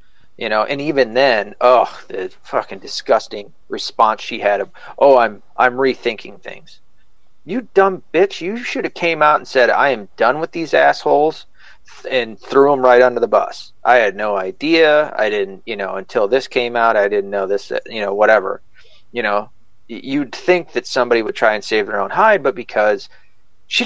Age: 40-59